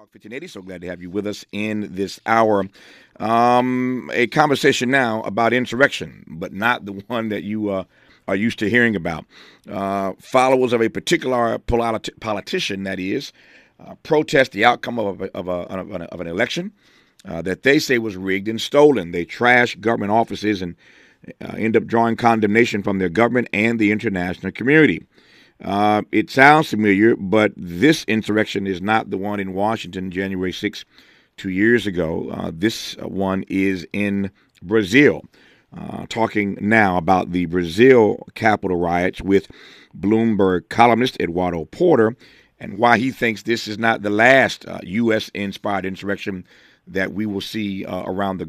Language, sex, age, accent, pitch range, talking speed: English, male, 50-69, American, 95-115 Hz, 160 wpm